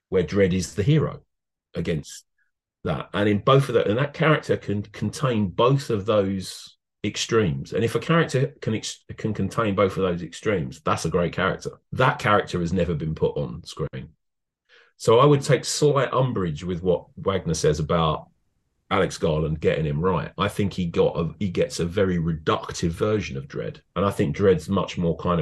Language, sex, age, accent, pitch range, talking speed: English, male, 30-49, British, 95-140 Hz, 190 wpm